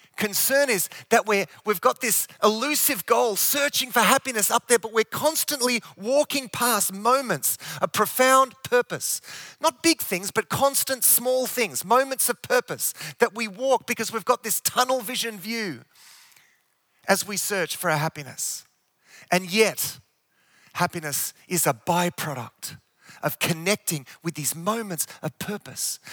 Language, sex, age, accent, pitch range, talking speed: English, male, 30-49, Australian, 160-235 Hz, 140 wpm